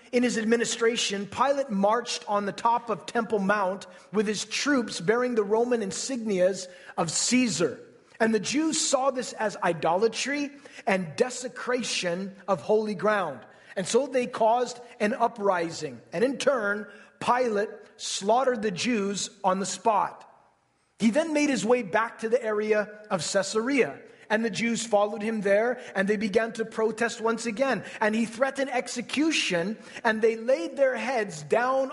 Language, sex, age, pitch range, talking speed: English, male, 30-49, 200-240 Hz, 155 wpm